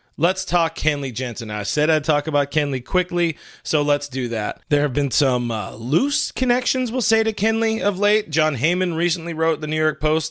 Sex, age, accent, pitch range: male, 30-49, American, 135-170 Hz